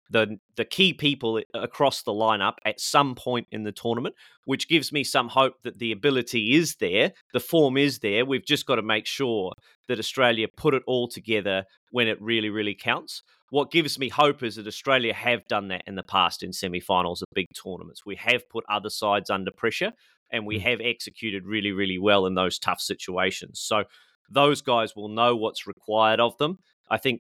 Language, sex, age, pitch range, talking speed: English, male, 30-49, 100-125 Hz, 200 wpm